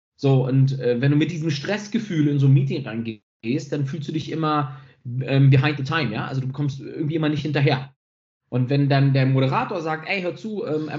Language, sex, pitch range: German, male, 130-160 Hz